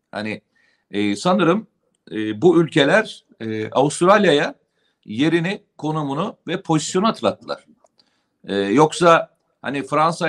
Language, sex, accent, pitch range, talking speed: Turkish, male, native, 140-175 Hz, 100 wpm